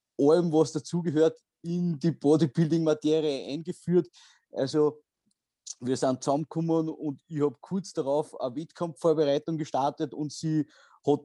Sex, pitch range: male, 140-170 Hz